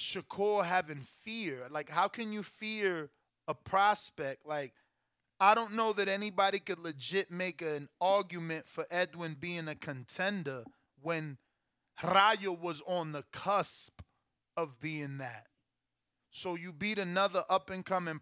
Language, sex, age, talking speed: English, male, 20-39, 140 wpm